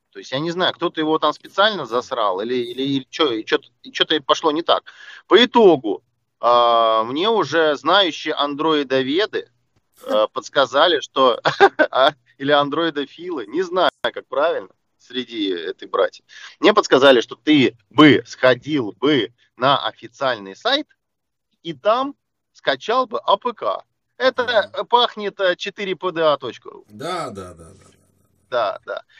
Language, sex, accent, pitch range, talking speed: Russian, male, native, 125-205 Hz, 135 wpm